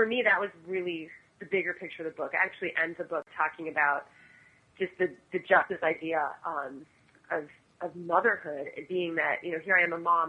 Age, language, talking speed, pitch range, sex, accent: 30-49, English, 210 wpm, 150-180 Hz, female, American